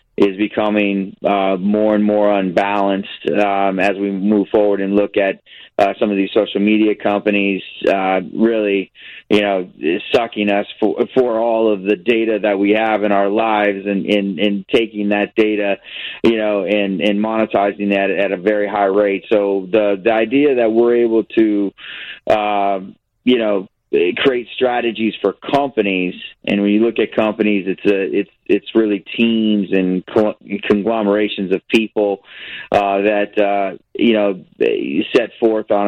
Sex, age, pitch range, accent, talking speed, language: male, 30-49, 100-110 Hz, American, 160 wpm, English